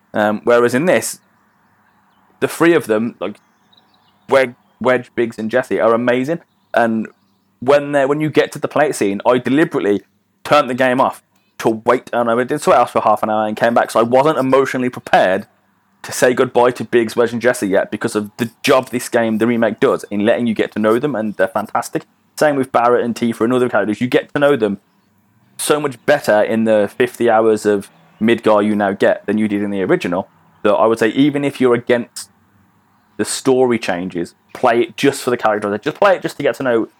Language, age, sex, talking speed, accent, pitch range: English, 20-39, male, 220 wpm, British, 110-135 Hz